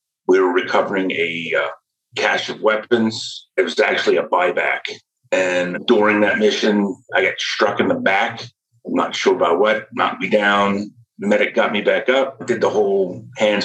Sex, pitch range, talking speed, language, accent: male, 95-120 Hz, 180 wpm, English, American